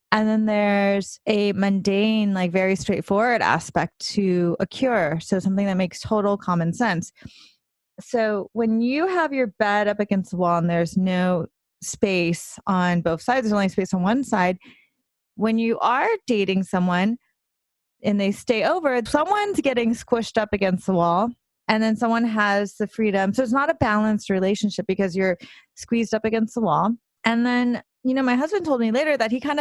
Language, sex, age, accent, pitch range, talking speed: English, female, 30-49, American, 195-235 Hz, 180 wpm